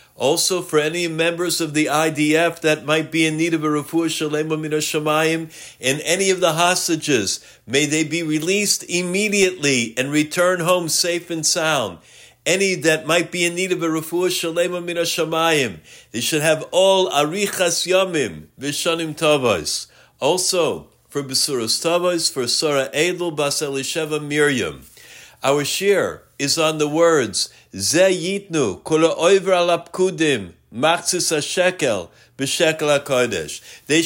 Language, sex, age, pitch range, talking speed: English, male, 50-69, 155-185 Hz, 130 wpm